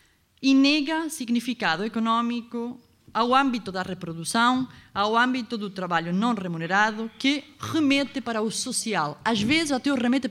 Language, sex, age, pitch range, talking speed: Portuguese, female, 20-39, 185-255 Hz, 140 wpm